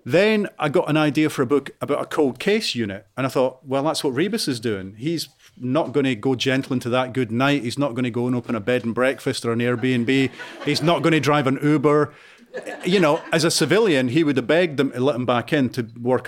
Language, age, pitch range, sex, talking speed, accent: English, 40-59, 120-150 Hz, male, 260 wpm, British